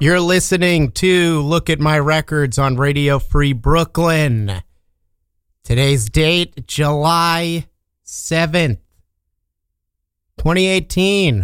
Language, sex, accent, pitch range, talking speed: English, male, American, 110-140 Hz, 85 wpm